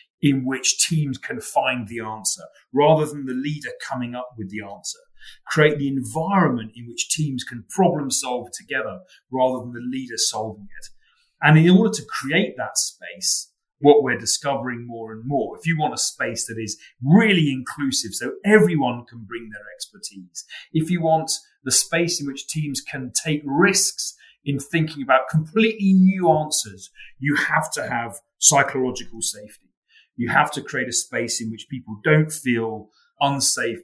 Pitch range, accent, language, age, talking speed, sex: 120-160 Hz, British, English, 30-49, 170 wpm, male